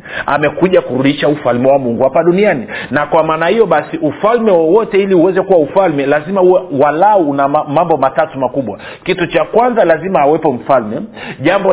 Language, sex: Swahili, male